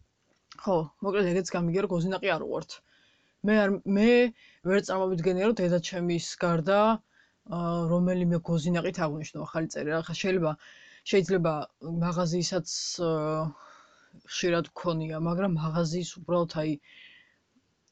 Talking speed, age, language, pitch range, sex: 105 wpm, 20-39, English, 165-195 Hz, female